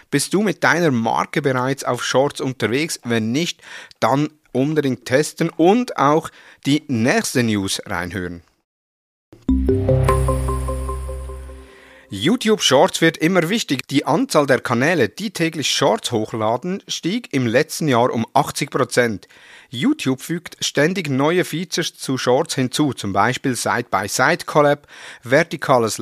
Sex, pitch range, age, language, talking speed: male, 120-160 Hz, 50-69, German, 120 wpm